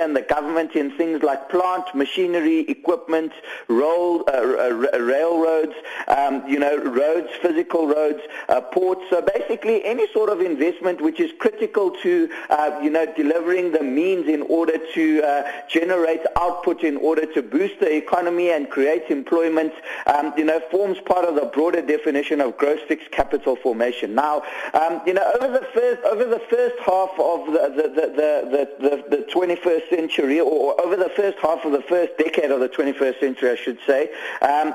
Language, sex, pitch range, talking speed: English, male, 150-195 Hz, 170 wpm